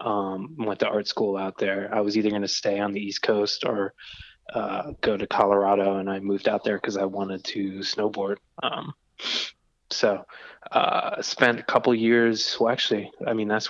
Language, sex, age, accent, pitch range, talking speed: English, male, 20-39, American, 100-115 Hz, 195 wpm